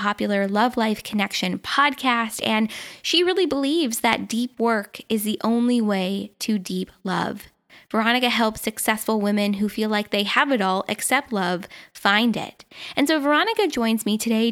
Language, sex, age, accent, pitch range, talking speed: English, female, 10-29, American, 205-245 Hz, 165 wpm